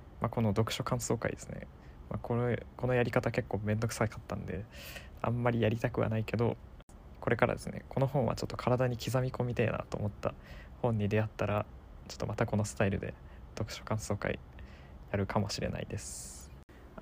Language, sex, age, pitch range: Japanese, male, 20-39, 100-120 Hz